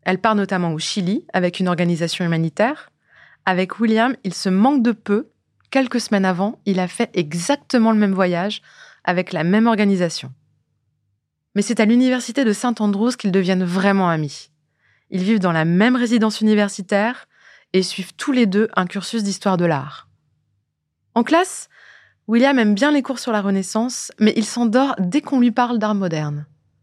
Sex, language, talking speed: female, French, 170 wpm